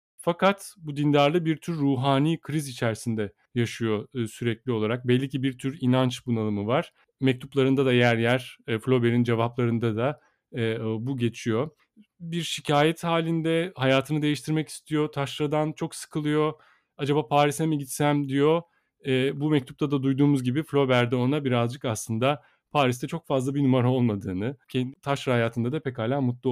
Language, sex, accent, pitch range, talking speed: Turkish, male, native, 125-155 Hz, 140 wpm